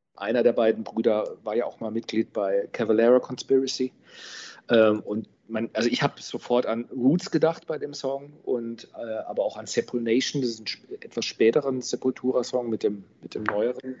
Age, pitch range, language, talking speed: 40-59, 110-130 Hz, German, 180 wpm